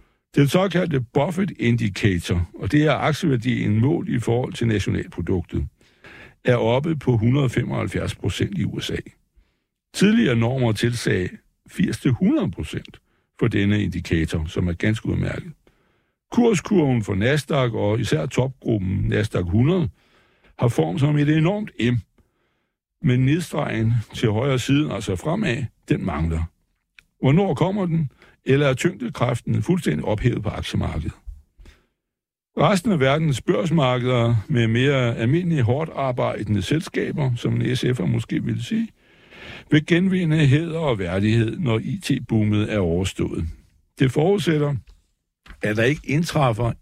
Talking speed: 125 wpm